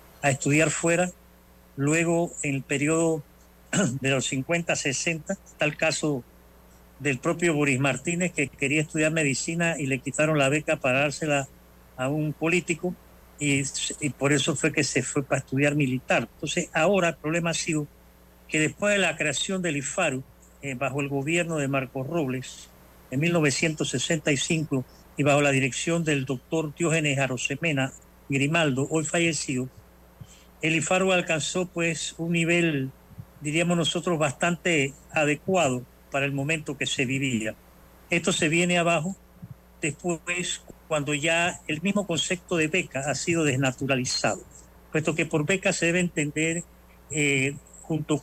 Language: Spanish